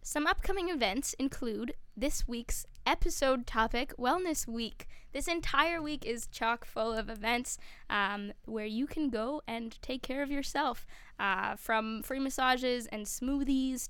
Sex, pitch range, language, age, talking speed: female, 225-280 Hz, English, 10-29, 145 wpm